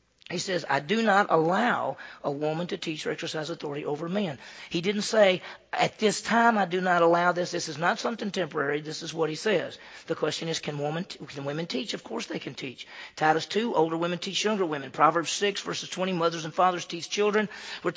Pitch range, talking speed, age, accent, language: 155-200 Hz, 225 wpm, 40-59, American, English